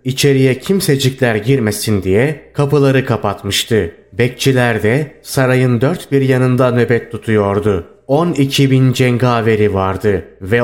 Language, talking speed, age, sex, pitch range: Turkish, 100 wpm, 30-49, male, 110-135 Hz